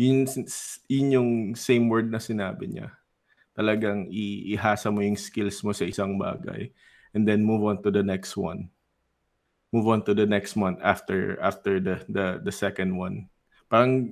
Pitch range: 100-120 Hz